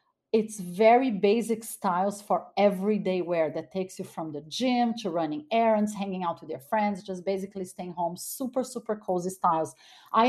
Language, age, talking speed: English, 40-59, 175 wpm